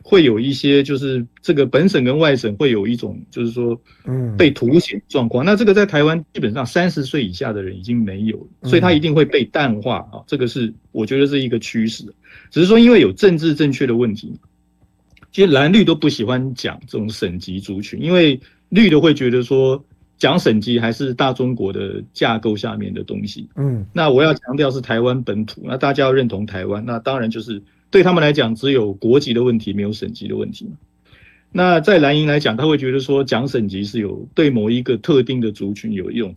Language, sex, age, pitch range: Chinese, male, 50-69, 110-150 Hz